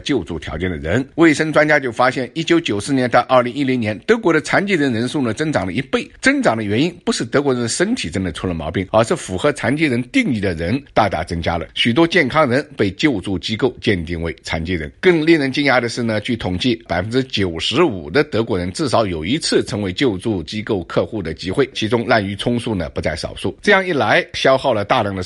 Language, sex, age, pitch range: Chinese, male, 50-69, 95-135 Hz